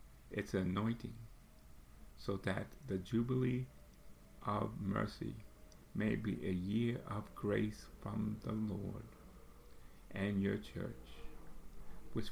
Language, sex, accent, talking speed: English, male, American, 100 wpm